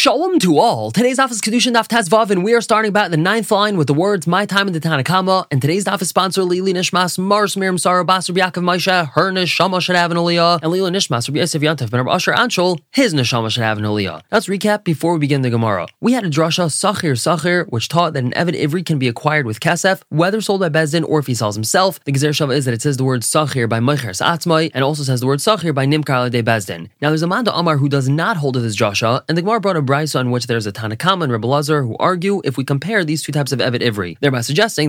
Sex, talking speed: male, 250 wpm